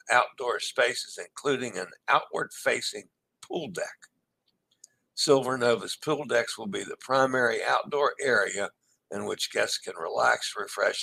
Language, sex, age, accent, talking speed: English, male, 60-79, American, 125 wpm